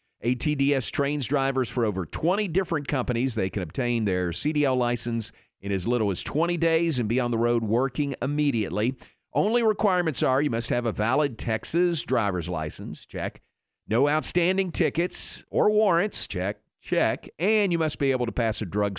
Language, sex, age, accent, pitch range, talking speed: English, male, 50-69, American, 110-155 Hz, 175 wpm